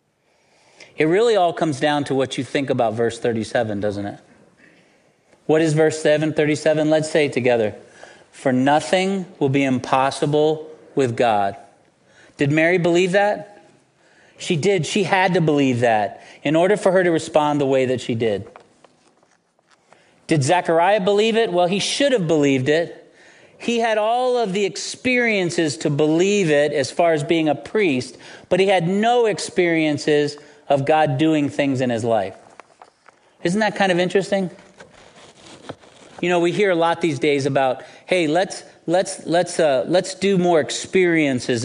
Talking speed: 160 wpm